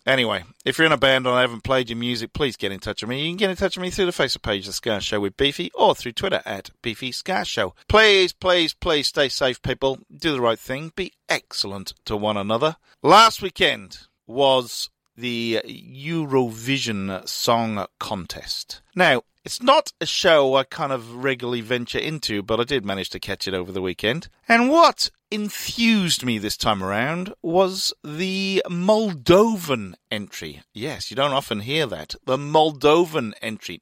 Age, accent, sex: 40-59, British, male